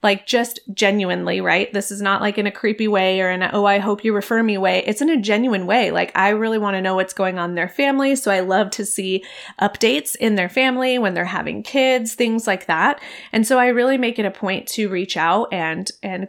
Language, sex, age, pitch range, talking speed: English, female, 30-49, 195-250 Hz, 245 wpm